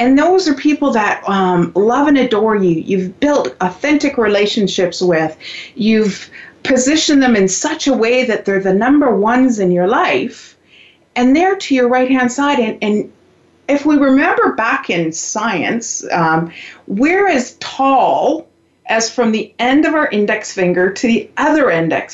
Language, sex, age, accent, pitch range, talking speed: English, female, 50-69, American, 195-280 Hz, 165 wpm